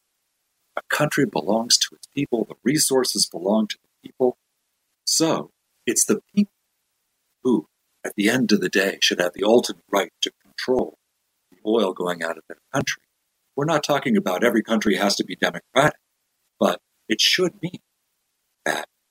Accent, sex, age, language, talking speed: American, male, 50-69, English, 165 wpm